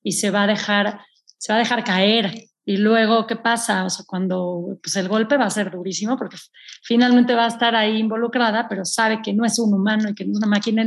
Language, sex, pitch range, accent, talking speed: Spanish, female, 195-230 Hz, Mexican, 230 wpm